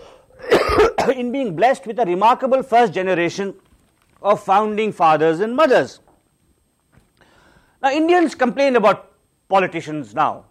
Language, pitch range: English, 170-255 Hz